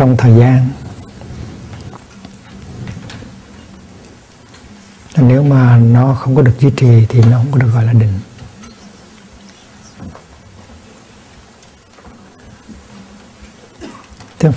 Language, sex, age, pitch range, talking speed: Vietnamese, male, 60-79, 115-140 Hz, 80 wpm